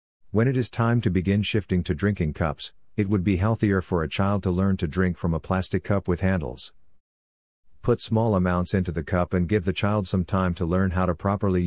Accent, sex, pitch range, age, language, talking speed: American, male, 85-100 Hz, 50-69, English, 225 wpm